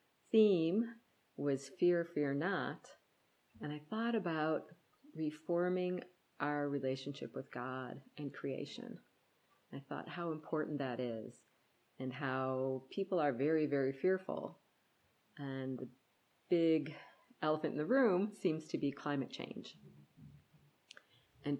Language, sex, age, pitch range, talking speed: English, female, 40-59, 130-165 Hz, 115 wpm